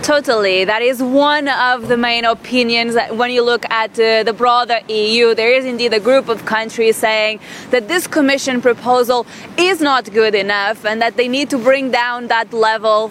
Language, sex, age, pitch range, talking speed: English, female, 20-39, 225-280 Hz, 190 wpm